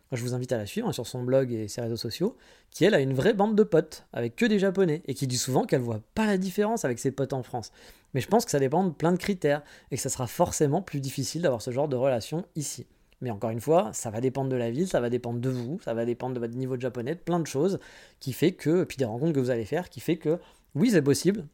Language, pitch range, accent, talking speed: French, 125-160 Hz, French, 295 wpm